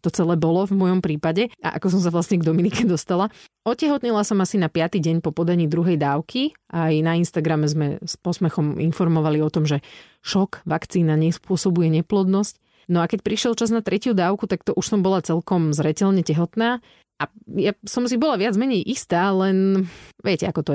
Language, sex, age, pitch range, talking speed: Slovak, female, 30-49, 165-195 Hz, 195 wpm